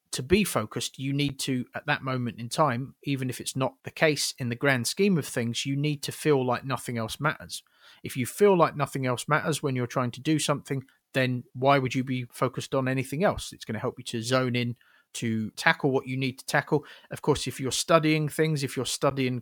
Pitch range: 125-150 Hz